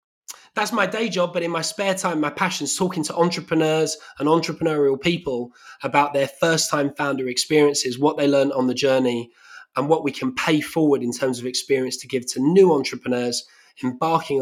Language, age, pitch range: English, 20-39, 125-165 Hz